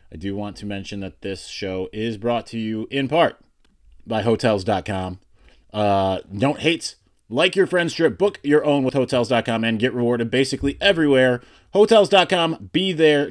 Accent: American